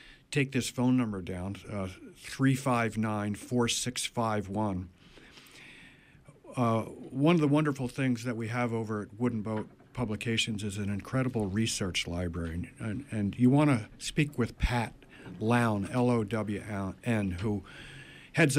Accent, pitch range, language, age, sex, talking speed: American, 105-130 Hz, English, 50-69, male, 140 wpm